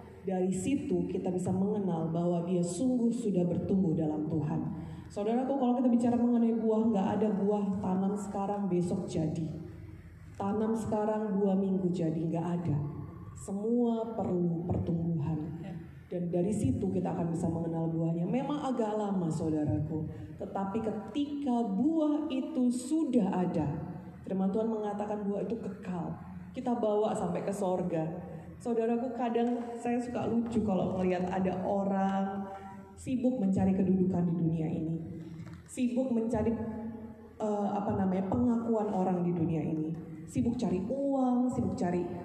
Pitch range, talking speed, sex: 175-230 Hz, 135 wpm, female